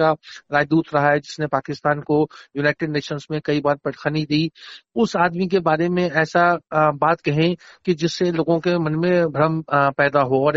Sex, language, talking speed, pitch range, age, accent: male, Hindi, 175 wpm, 150-175 Hz, 50-69, native